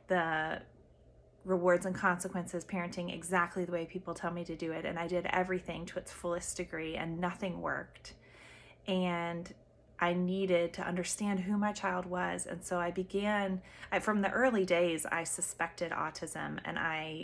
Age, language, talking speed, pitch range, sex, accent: 30-49, English, 165 wpm, 165-185 Hz, female, American